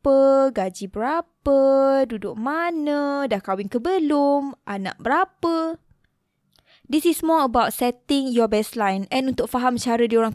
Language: Malay